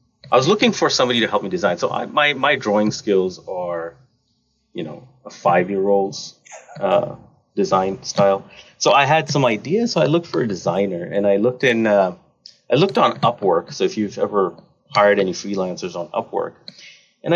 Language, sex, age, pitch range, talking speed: English, male, 30-49, 100-150 Hz, 185 wpm